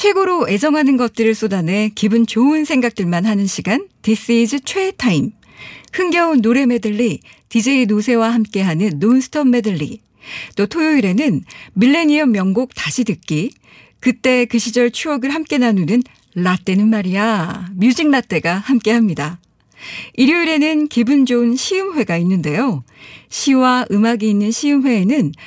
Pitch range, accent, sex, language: 195-270 Hz, native, female, Korean